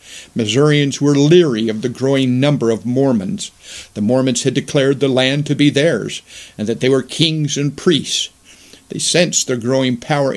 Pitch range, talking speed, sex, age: 120-150 Hz, 175 wpm, male, 50-69